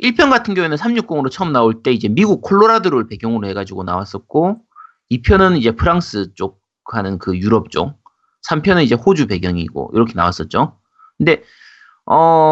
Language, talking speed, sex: English, 140 wpm, male